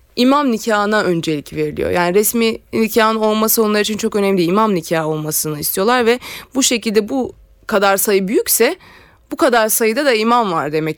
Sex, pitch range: female, 190-245 Hz